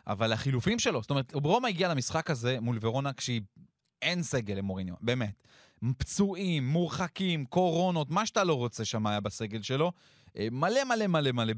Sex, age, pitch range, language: male, 20-39, 115-165 Hz, Hebrew